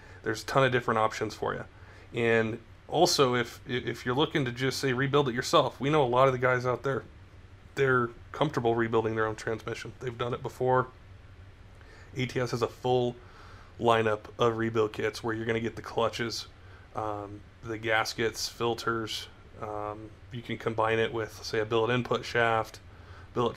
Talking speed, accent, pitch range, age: 180 wpm, American, 110-125 Hz, 30-49